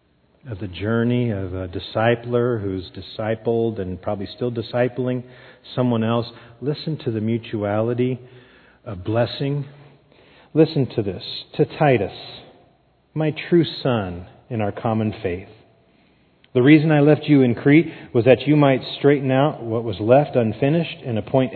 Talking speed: 140 wpm